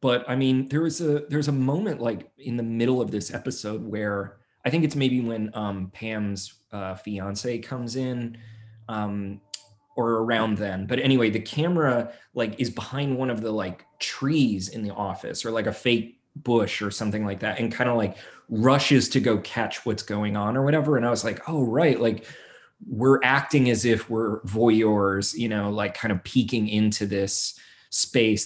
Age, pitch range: 20-39, 105-130 Hz